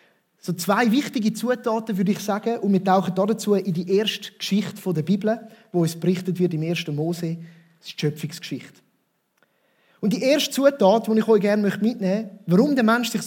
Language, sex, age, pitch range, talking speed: German, male, 30-49, 180-225 Hz, 195 wpm